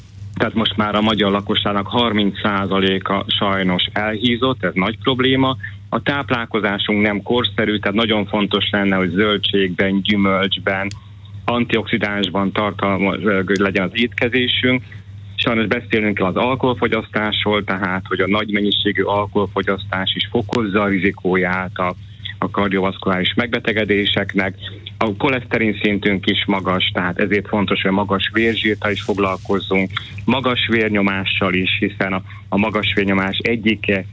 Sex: male